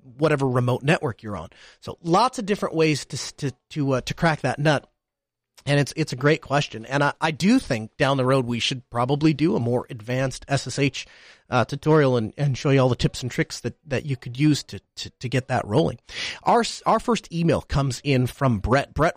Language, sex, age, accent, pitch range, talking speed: English, male, 30-49, American, 125-175 Hz, 220 wpm